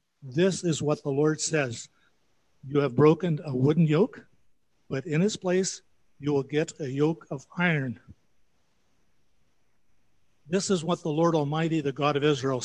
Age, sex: 50-69, male